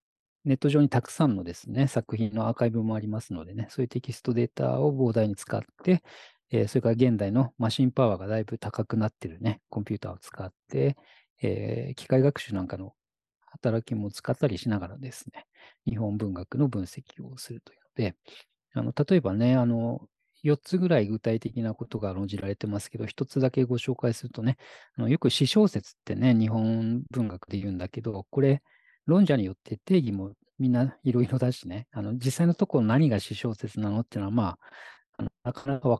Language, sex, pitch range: Japanese, male, 110-135 Hz